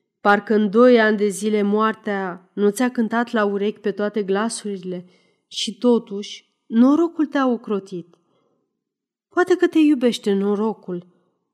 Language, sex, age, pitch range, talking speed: Romanian, female, 30-49, 195-235 Hz, 130 wpm